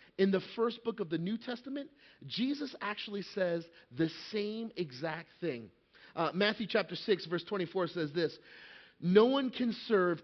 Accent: American